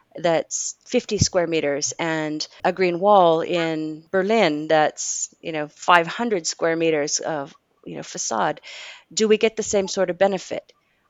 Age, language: 30-49, English